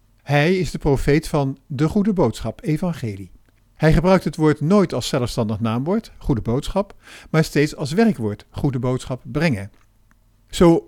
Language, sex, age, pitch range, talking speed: Dutch, male, 50-69, 120-170 Hz, 150 wpm